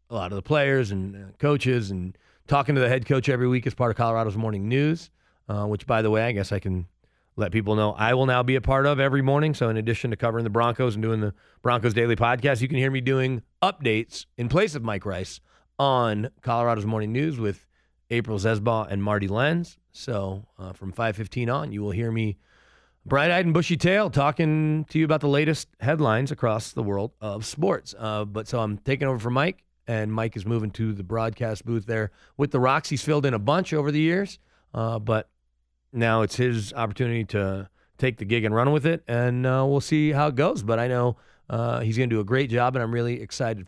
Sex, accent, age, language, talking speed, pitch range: male, American, 30-49, English, 230 wpm, 110-145 Hz